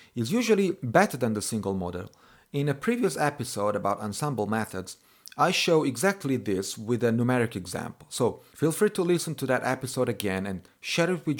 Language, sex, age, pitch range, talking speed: English, male, 40-59, 105-150 Hz, 185 wpm